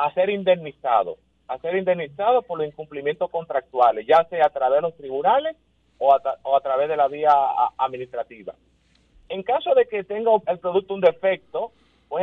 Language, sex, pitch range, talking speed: Spanish, male, 150-200 Hz, 185 wpm